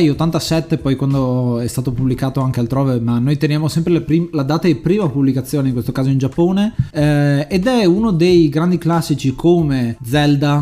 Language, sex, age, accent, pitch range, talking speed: Italian, male, 20-39, native, 135-165 Hz, 180 wpm